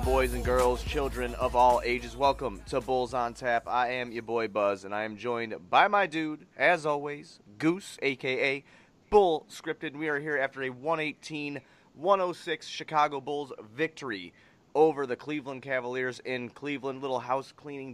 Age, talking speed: 30-49, 165 wpm